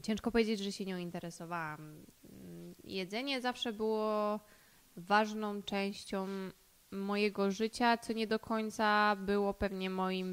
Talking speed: 115 wpm